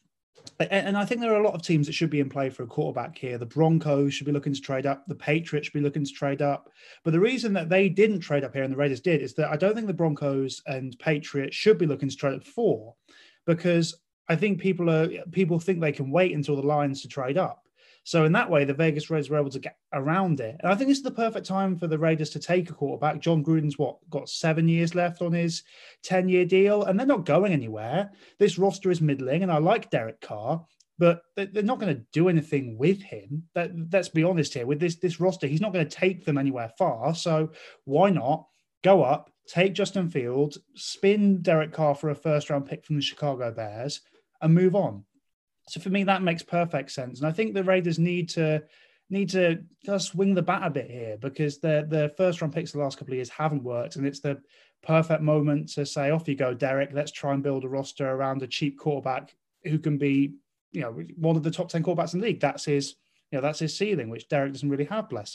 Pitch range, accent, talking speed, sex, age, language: 145-175 Hz, British, 240 wpm, male, 20-39, English